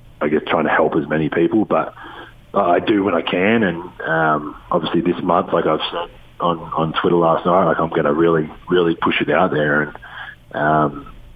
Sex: male